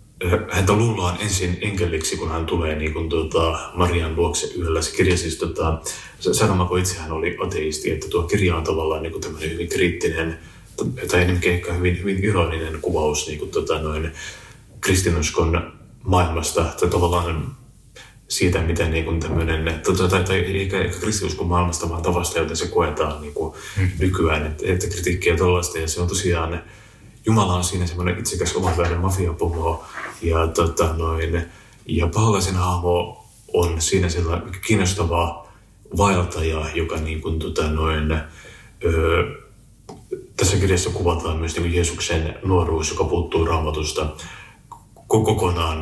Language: Finnish